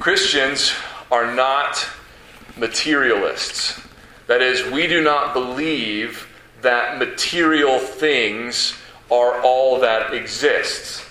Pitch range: 130-185 Hz